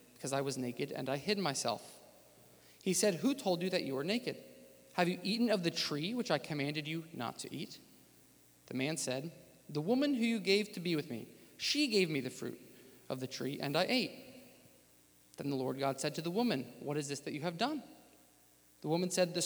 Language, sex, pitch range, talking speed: English, male, 135-195 Hz, 220 wpm